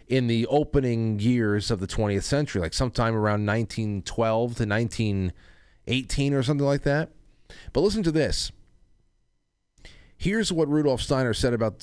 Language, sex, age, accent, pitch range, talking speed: English, male, 30-49, American, 95-125 Hz, 140 wpm